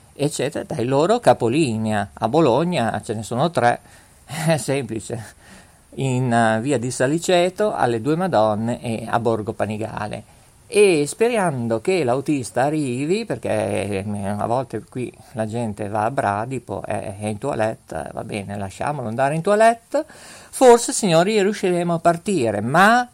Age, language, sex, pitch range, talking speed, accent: 50-69, Italian, male, 115-180 Hz, 135 wpm, native